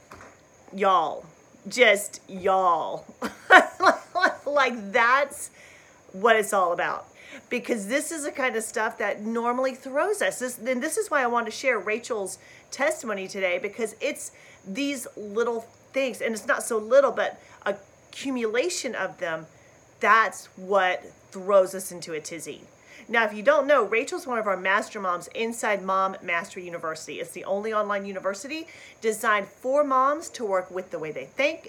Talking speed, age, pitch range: 155 wpm, 40-59, 200-275 Hz